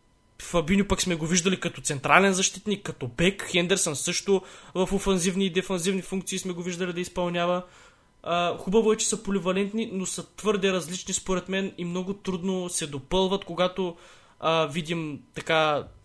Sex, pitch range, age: male, 160-190 Hz, 20-39